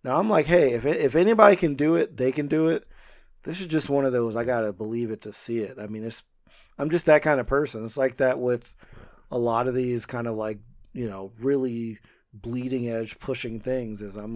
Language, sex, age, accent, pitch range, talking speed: English, male, 30-49, American, 115-140 Hz, 240 wpm